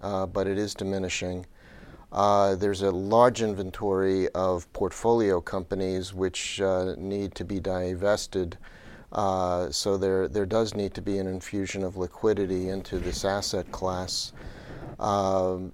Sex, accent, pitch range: male, American, 95-100 Hz